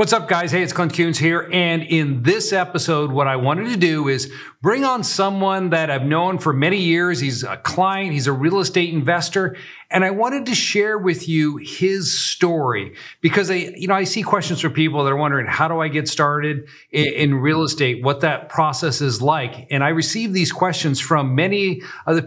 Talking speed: 205 wpm